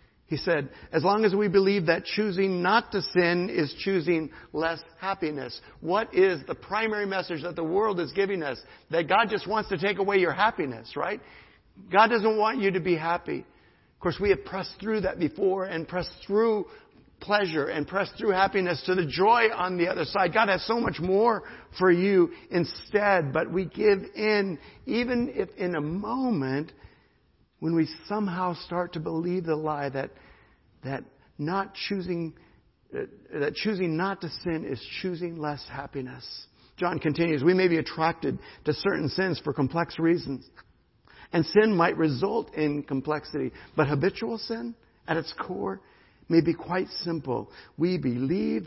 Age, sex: 60-79, male